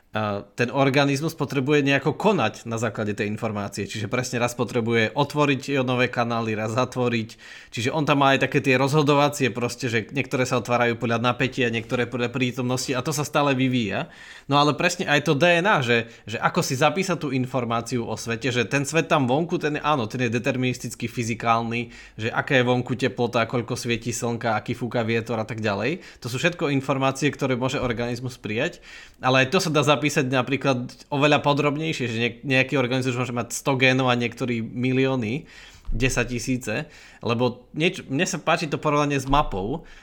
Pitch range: 115-140 Hz